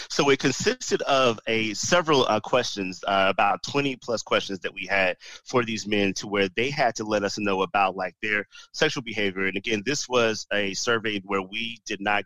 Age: 30-49